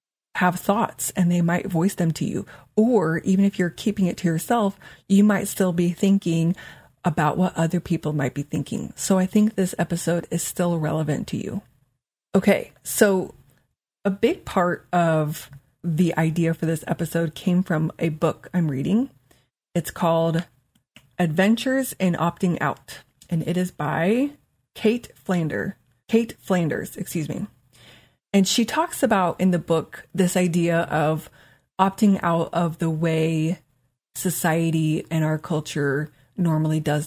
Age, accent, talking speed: 30-49, American, 150 wpm